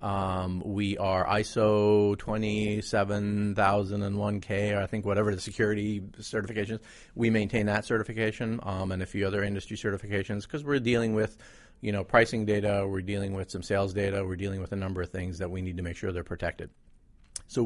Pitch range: 95-105 Hz